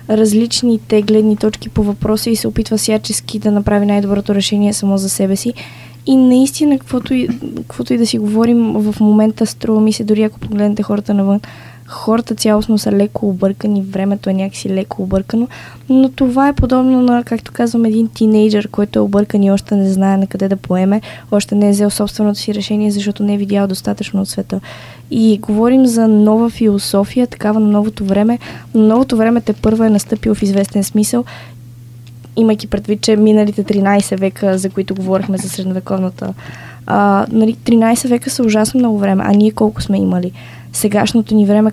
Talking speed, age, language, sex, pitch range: 175 wpm, 20-39, Bulgarian, female, 200-220 Hz